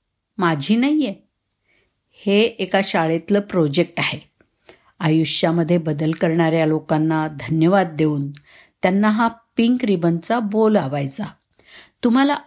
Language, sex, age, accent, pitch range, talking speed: Marathi, female, 50-69, native, 160-220 Hz, 100 wpm